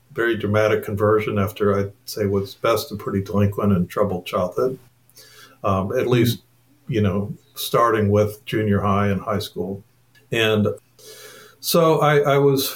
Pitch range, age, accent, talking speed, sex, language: 105-140 Hz, 50-69, American, 145 wpm, male, English